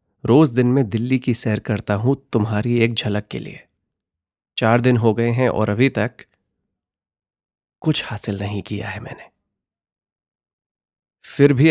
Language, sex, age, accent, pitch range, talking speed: Hindi, male, 30-49, native, 100-120 Hz, 150 wpm